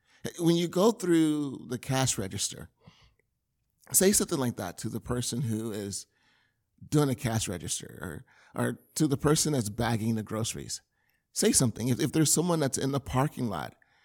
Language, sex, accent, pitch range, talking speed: English, male, American, 110-160 Hz, 170 wpm